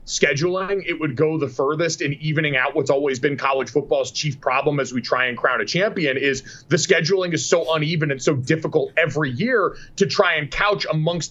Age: 30-49